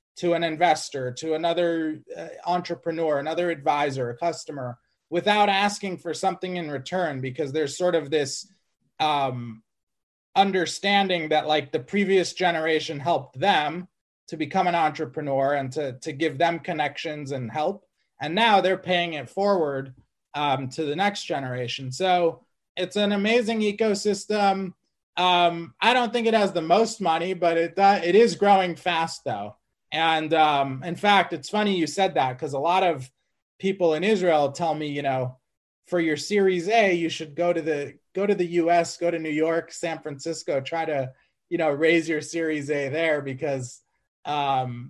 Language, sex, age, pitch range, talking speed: English, male, 30-49, 145-180 Hz, 170 wpm